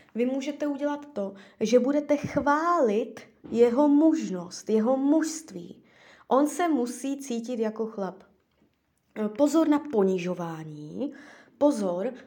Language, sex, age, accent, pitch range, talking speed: Czech, female, 20-39, native, 210-285 Hz, 105 wpm